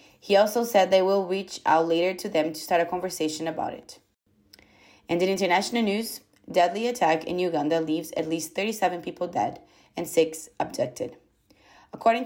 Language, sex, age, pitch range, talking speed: English, female, 20-39, 155-185 Hz, 165 wpm